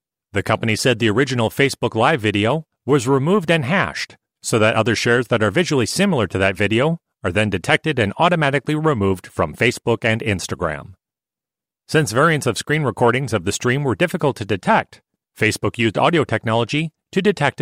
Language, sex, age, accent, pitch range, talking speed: English, male, 40-59, American, 110-145 Hz, 175 wpm